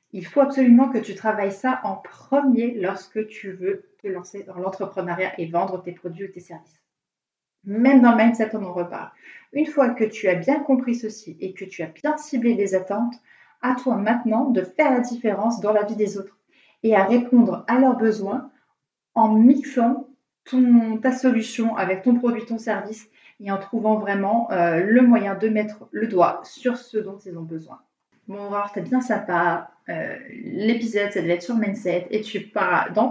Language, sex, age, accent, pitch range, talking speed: French, female, 30-49, French, 195-240 Hz, 190 wpm